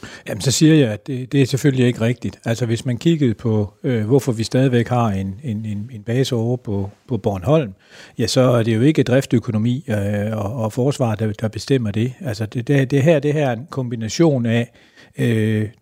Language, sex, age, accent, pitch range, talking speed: Danish, male, 60-79, native, 110-140 Hz, 215 wpm